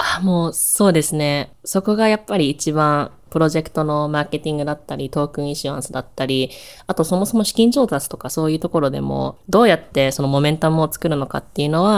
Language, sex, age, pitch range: Japanese, female, 20-39, 140-185 Hz